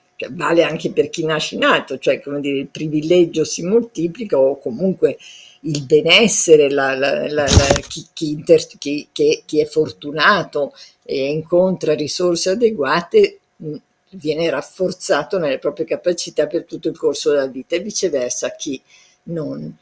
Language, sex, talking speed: Italian, female, 145 wpm